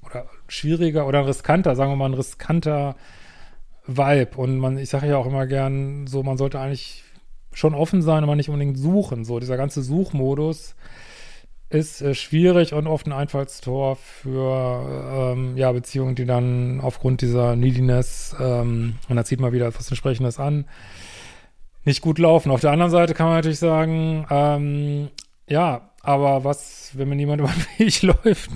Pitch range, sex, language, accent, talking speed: 130-150 Hz, male, German, German, 160 wpm